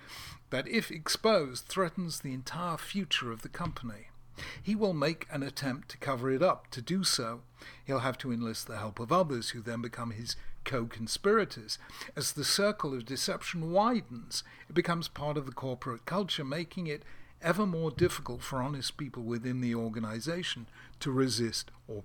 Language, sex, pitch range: English, male, 120-155 Hz